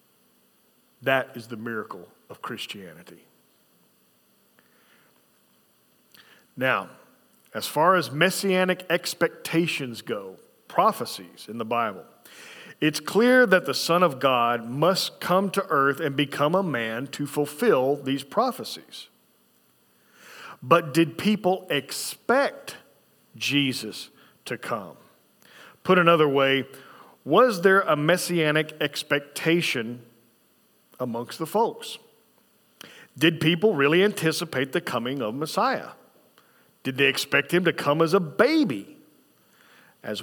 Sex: male